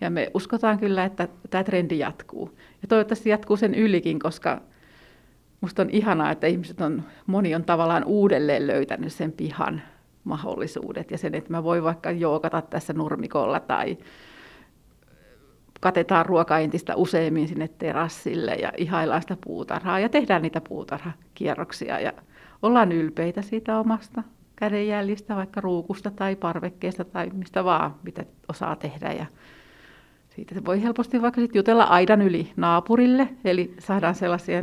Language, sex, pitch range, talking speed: Finnish, female, 165-210 Hz, 140 wpm